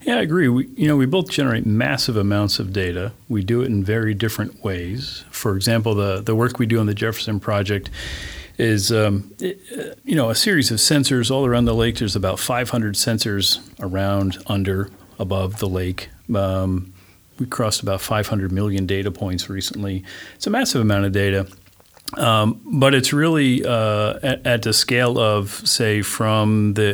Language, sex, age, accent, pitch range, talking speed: English, male, 40-59, American, 95-115 Hz, 180 wpm